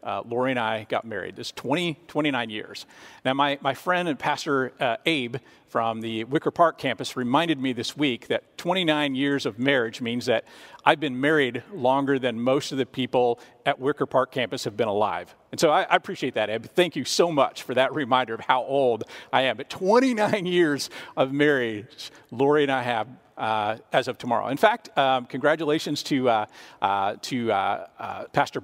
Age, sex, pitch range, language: 50-69, male, 125-160 Hz, English